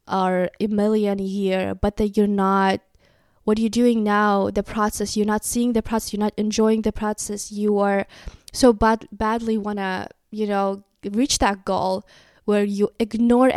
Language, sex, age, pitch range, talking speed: English, female, 20-39, 205-245 Hz, 175 wpm